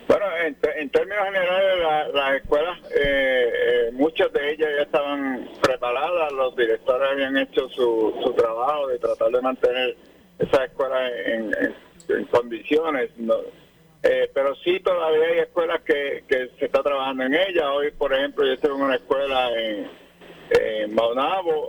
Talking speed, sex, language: 165 wpm, male, Spanish